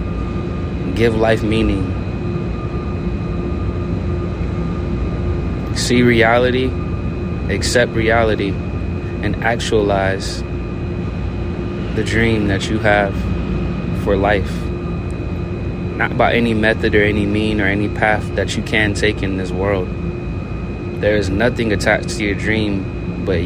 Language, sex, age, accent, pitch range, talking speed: English, male, 20-39, American, 90-100 Hz, 105 wpm